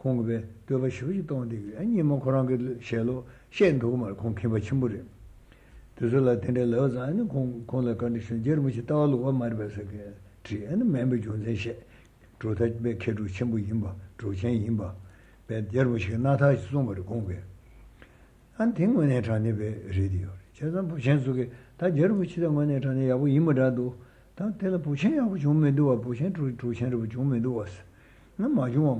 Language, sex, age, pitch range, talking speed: Italian, male, 60-79, 115-130 Hz, 135 wpm